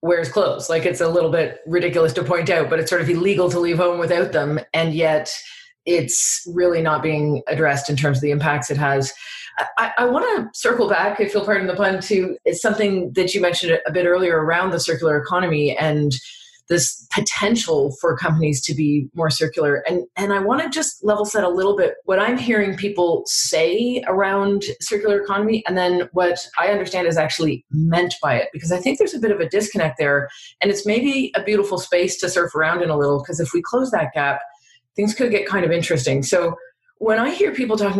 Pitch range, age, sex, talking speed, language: 150-200 Hz, 30-49, female, 215 wpm, English